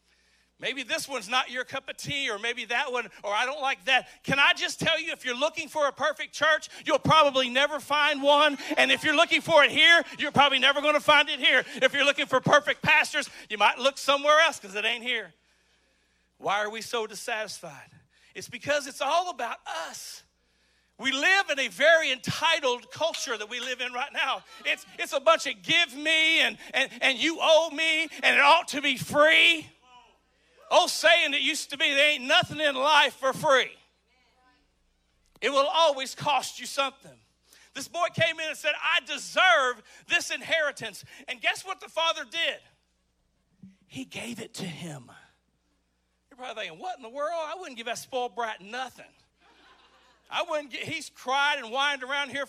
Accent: American